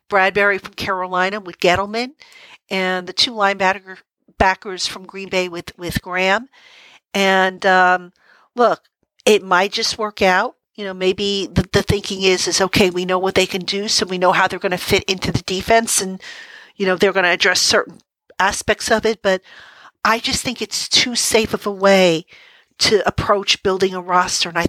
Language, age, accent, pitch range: English, 50-69, American, 185-220 Hz